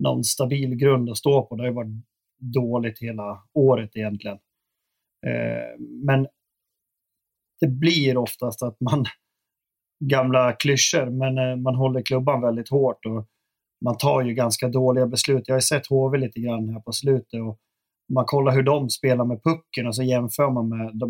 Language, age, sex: Swedish, 30-49, male